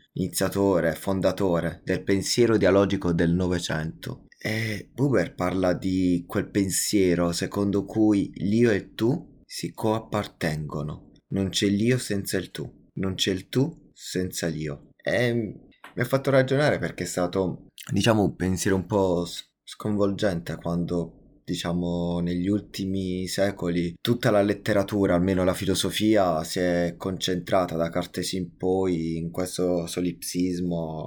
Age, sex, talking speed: 20-39, male, 130 wpm